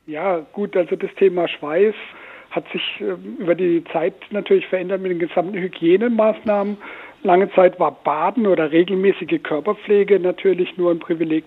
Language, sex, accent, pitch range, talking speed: German, male, German, 160-195 Hz, 150 wpm